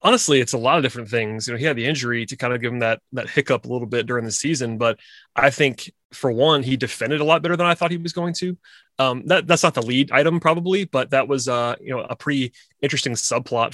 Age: 20-39